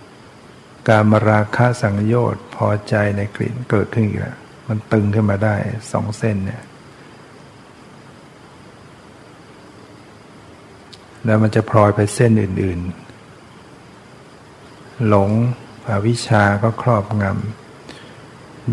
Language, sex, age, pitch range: Thai, male, 60-79, 105-120 Hz